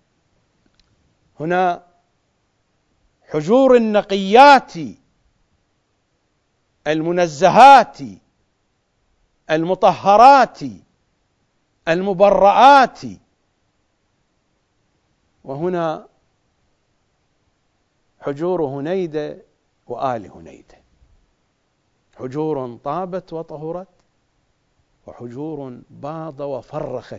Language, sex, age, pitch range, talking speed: English, male, 50-69, 115-180 Hz, 40 wpm